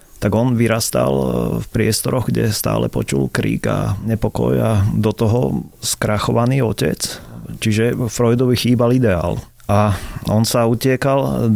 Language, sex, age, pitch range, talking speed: Slovak, male, 30-49, 100-120 Hz, 125 wpm